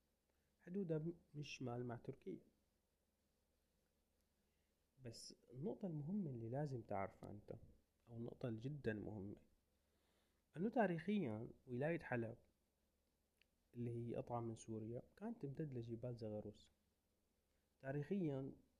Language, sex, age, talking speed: Arabic, male, 30-49, 95 wpm